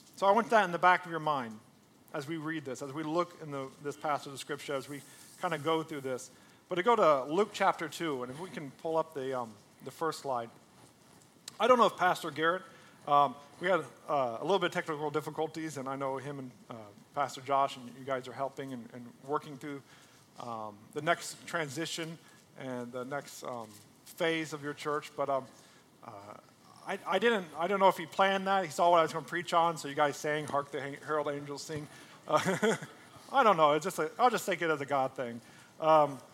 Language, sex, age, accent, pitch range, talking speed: English, male, 40-59, American, 135-175 Hz, 230 wpm